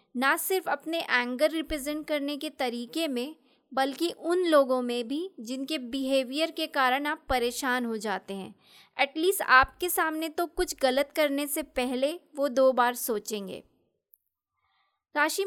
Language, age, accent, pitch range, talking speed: Hindi, 20-39, native, 255-330 Hz, 145 wpm